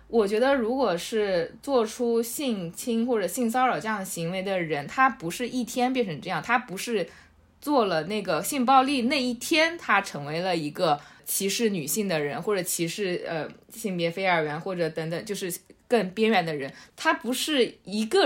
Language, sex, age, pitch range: Chinese, female, 20-39, 180-250 Hz